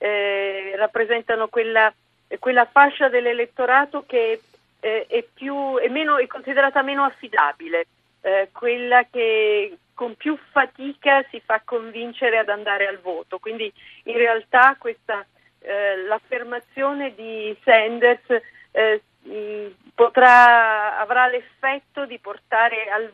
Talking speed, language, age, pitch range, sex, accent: 115 wpm, Italian, 40-59, 215-265 Hz, female, native